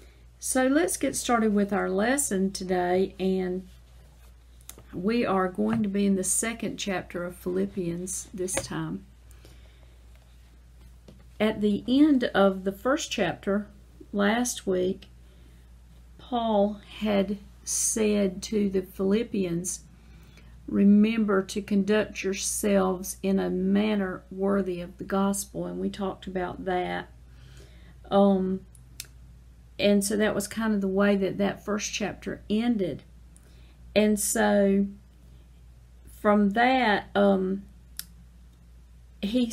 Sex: female